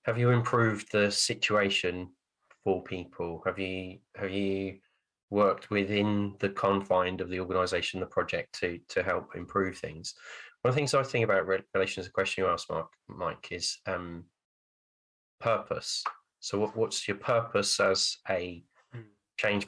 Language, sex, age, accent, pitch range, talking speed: English, male, 20-39, British, 95-110 Hz, 150 wpm